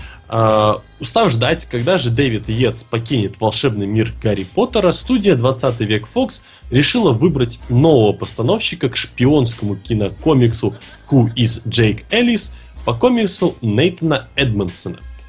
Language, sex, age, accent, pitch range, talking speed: Russian, male, 20-39, native, 110-155 Hz, 120 wpm